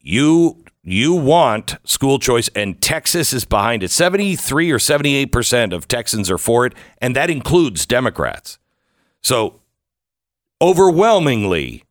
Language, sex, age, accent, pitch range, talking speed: English, male, 50-69, American, 100-135 Hz, 120 wpm